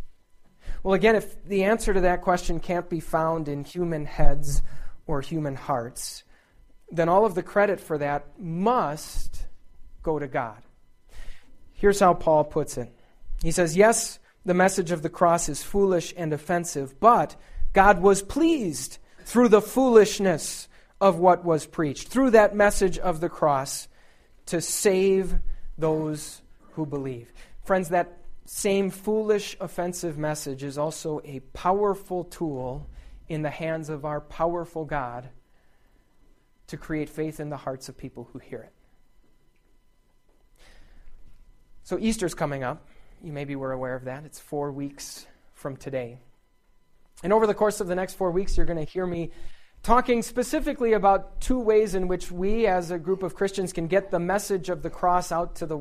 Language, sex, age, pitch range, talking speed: English, male, 30-49, 145-195 Hz, 160 wpm